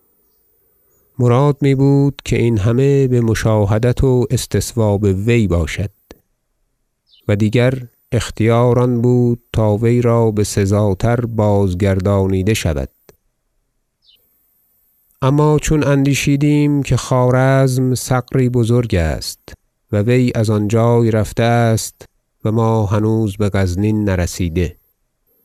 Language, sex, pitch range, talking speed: Persian, male, 105-125 Hz, 100 wpm